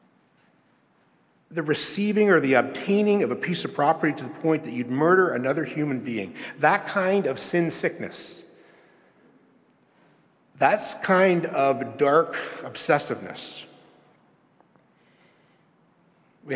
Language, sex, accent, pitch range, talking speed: English, male, American, 140-200 Hz, 110 wpm